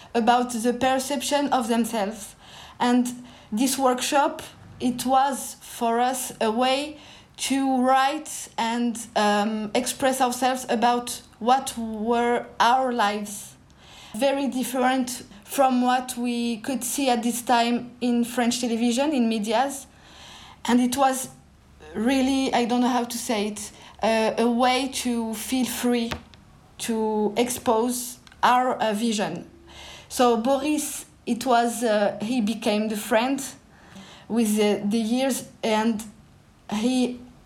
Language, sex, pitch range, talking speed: English, female, 225-255 Hz, 125 wpm